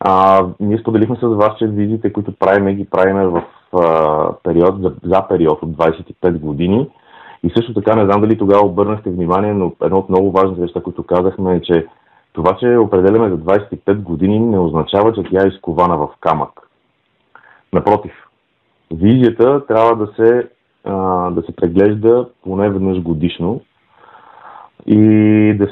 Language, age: Bulgarian, 30-49